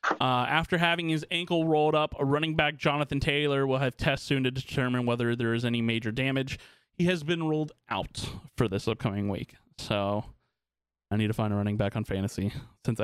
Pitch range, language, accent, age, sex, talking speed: 110-145 Hz, English, American, 20-39, male, 205 wpm